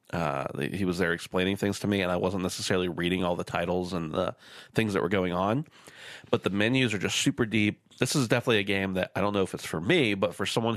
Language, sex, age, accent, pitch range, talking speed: English, male, 30-49, American, 90-110 Hz, 255 wpm